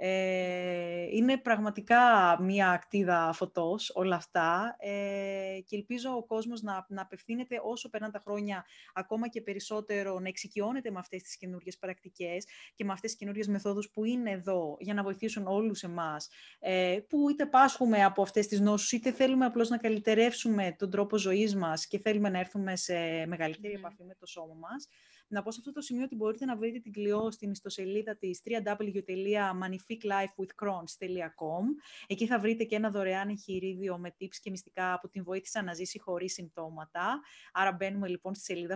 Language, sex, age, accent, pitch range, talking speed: Greek, female, 20-39, native, 180-215 Hz, 165 wpm